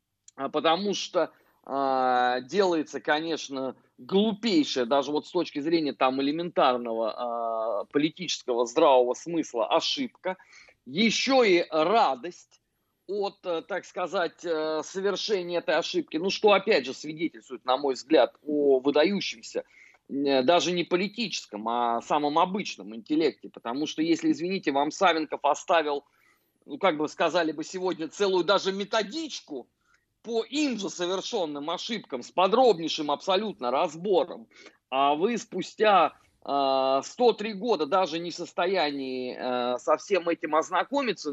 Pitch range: 140-205 Hz